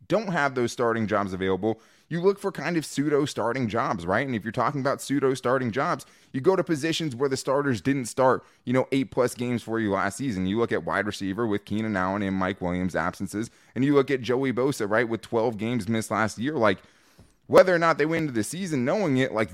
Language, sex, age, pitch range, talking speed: English, male, 20-39, 110-145 Hz, 230 wpm